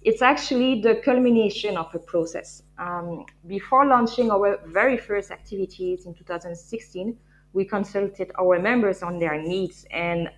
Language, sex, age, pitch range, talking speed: English, female, 20-39, 175-210 Hz, 140 wpm